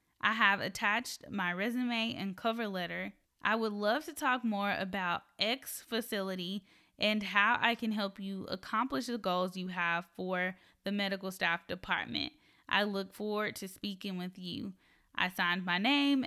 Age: 10-29